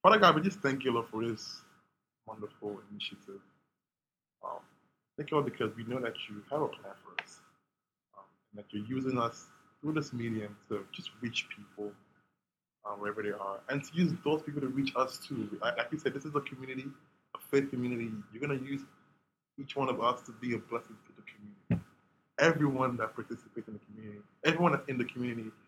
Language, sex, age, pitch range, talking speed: English, male, 20-39, 105-130 Hz, 205 wpm